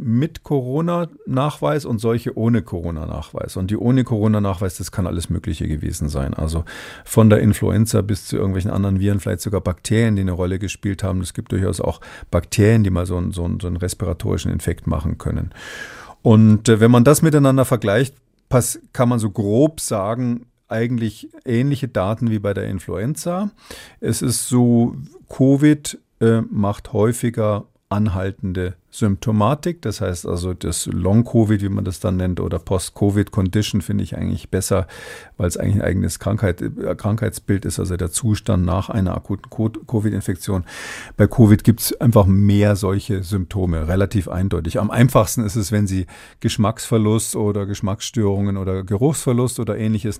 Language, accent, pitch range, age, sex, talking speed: German, German, 95-115 Hz, 40-59, male, 150 wpm